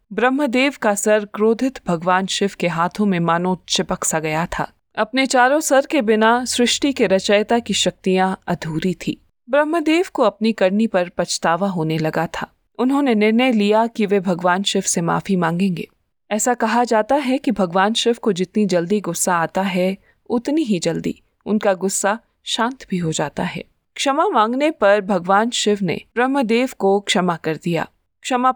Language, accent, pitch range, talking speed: Hindi, native, 185-240 Hz, 170 wpm